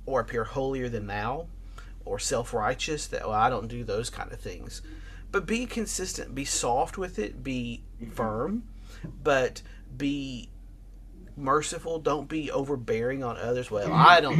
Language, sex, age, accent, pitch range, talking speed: English, male, 30-49, American, 105-150 Hz, 145 wpm